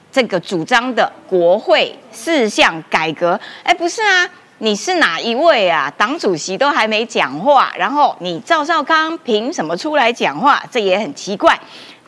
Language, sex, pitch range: Chinese, female, 195-285 Hz